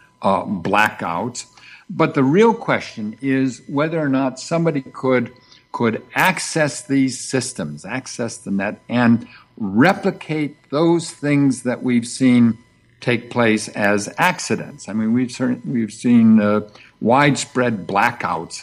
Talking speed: 125 wpm